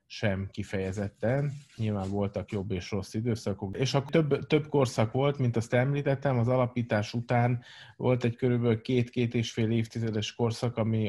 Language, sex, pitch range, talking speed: Hungarian, male, 100-120 Hz, 155 wpm